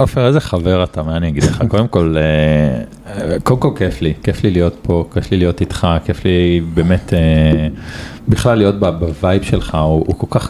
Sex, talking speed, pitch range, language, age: male, 200 wpm, 85-115 Hz, Hebrew, 40-59